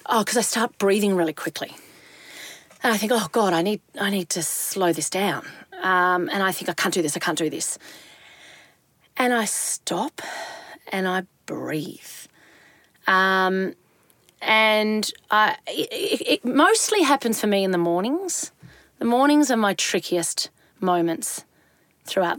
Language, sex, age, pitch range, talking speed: English, female, 30-49, 175-230 Hz, 155 wpm